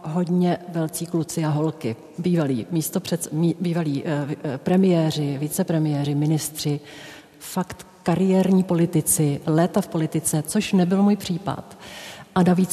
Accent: native